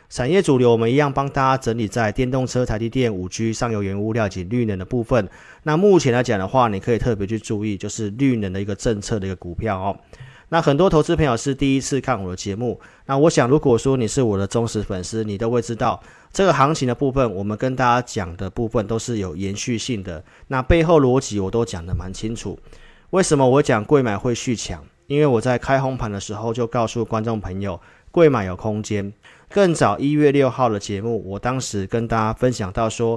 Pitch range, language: 105-130 Hz, Chinese